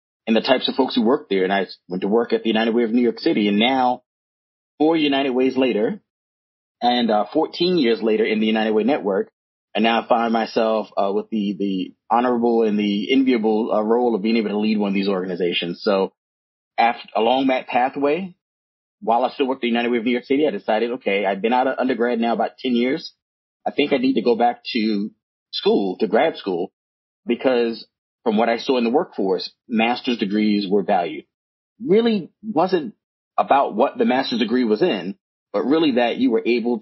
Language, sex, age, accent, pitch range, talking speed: English, male, 30-49, American, 105-125 Hz, 210 wpm